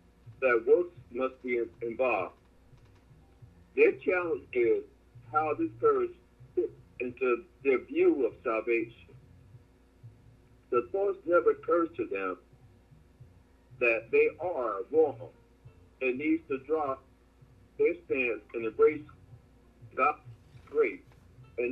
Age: 60-79